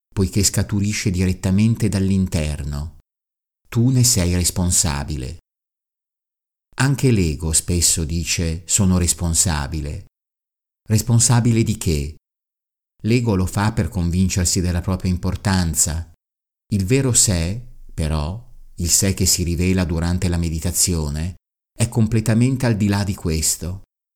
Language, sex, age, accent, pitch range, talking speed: Italian, male, 50-69, native, 85-105 Hz, 110 wpm